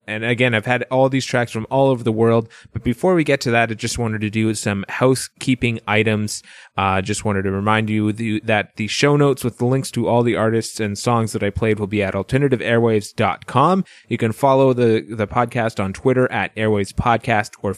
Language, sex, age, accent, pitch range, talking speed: English, male, 20-39, American, 105-130 Hz, 220 wpm